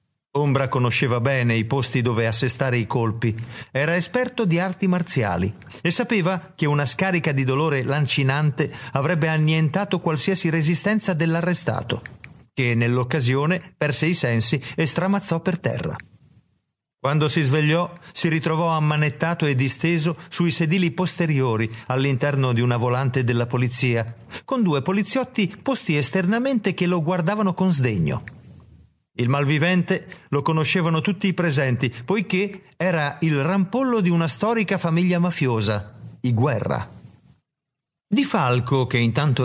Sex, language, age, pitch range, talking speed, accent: male, Italian, 50-69, 125-180 Hz, 130 wpm, native